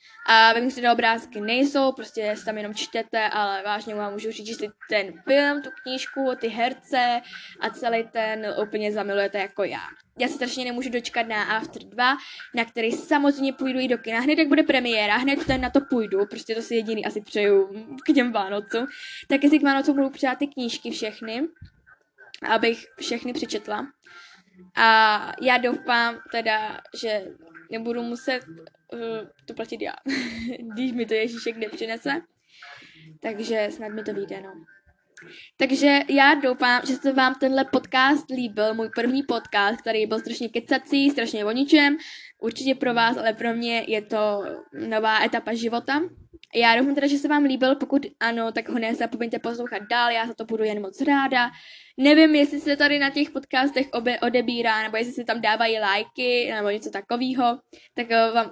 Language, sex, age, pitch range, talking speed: Czech, female, 10-29, 220-270 Hz, 170 wpm